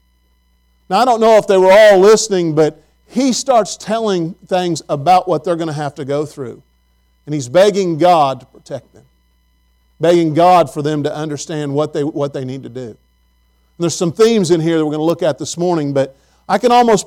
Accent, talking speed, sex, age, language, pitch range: American, 205 wpm, male, 40-59, English, 145-190 Hz